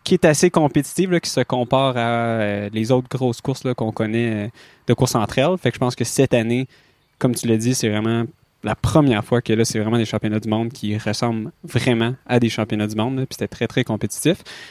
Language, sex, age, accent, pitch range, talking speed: French, male, 20-39, Canadian, 115-135 Hz, 240 wpm